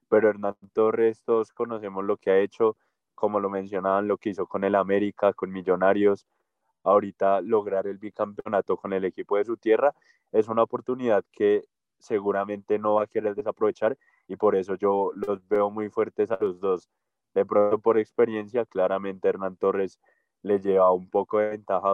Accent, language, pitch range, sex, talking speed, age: Colombian, Spanish, 100-115 Hz, male, 175 wpm, 10-29